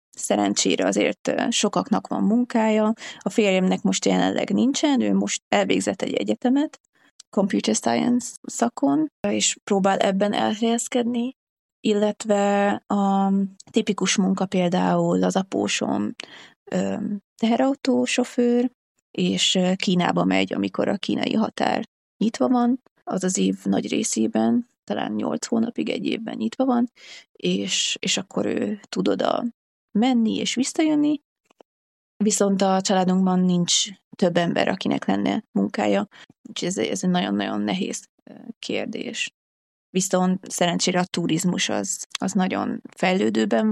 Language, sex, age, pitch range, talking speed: Hungarian, female, 30-49, 175-230 Hz, 120 wpm